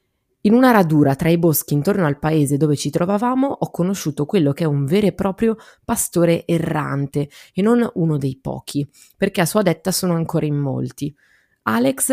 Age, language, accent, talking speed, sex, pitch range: 20-39, Italian, native, 185 wpm, female, 145-185 Hz